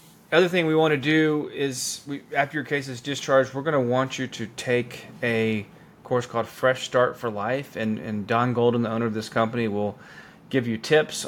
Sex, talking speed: male, 220 wpm